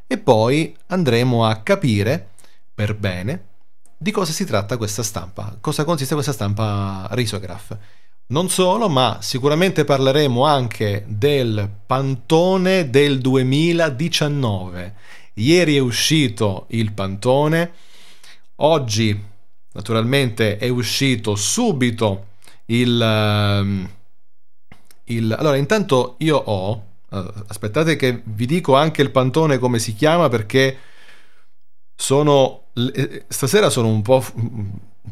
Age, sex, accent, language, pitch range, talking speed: 30-49, male, native, Italian, 105-145 Hz, 105 wpm